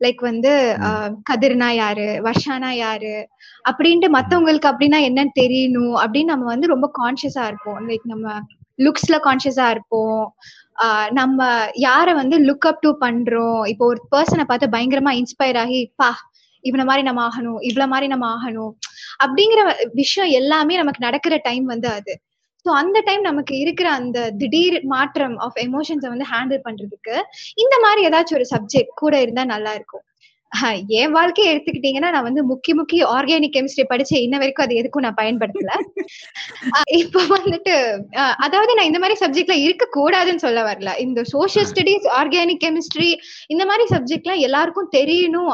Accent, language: native, Tamil